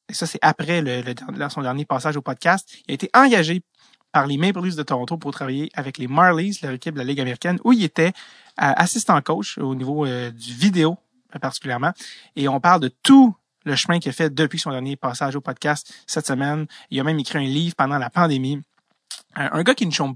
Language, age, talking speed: French, 30-49, 225 wpm